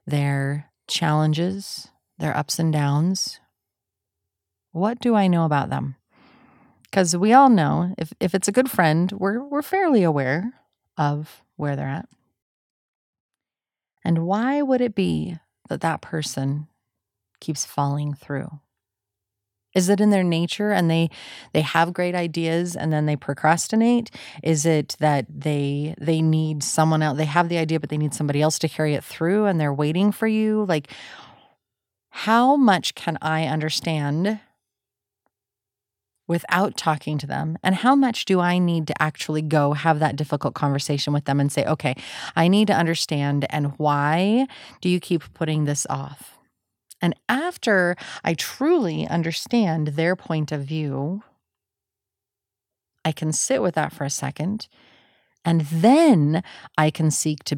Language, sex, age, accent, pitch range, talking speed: English, female, 30-49, American, 145-185 Hz, 150 wpm